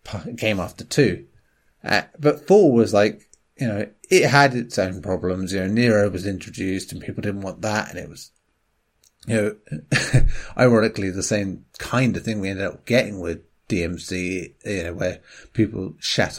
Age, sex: 30-49, male